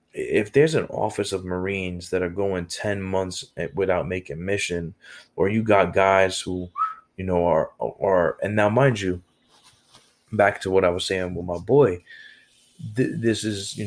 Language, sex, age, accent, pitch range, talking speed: English, male, 20-39, American, 85-95 Hz, 175 wpm